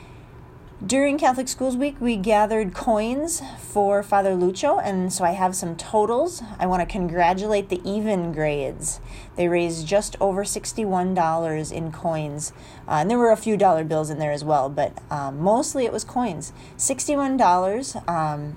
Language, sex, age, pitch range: English, female, 30-49, 155-210 Hz